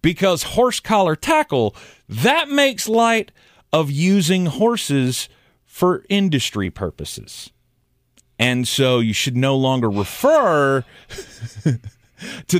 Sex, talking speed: male, 95 wpm